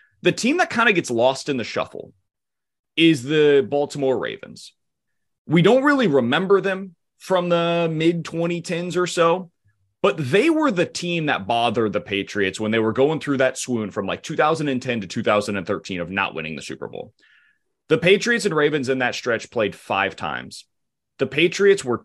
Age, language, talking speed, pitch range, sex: 30-49, English, 175 wpm, 120-180 Hz, male